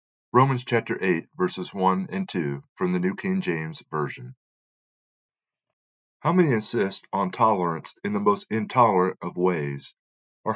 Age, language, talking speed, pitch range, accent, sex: 40-59, English, 140 wpm, 90-140 Hz, American, male